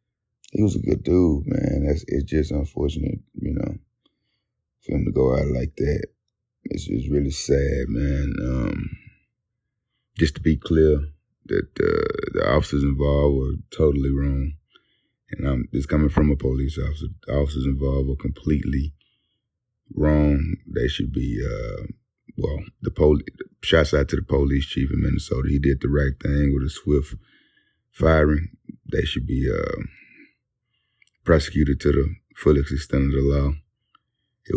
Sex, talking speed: male, 155 wpm